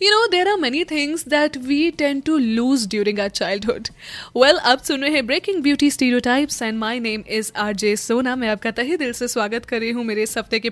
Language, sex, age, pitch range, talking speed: Hindi, female, 10-29, 235-325 Hz, 220 wpm